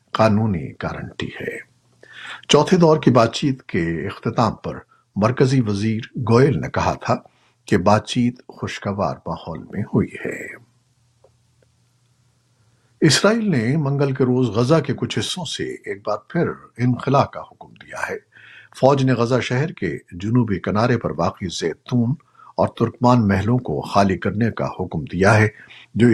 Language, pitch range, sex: Urdu, 105-130 Hz, male